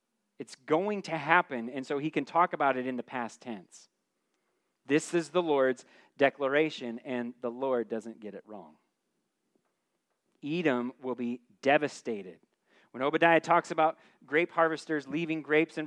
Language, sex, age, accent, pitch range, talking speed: English, male, 30-49, American, 120-160 Hz, 150 wpm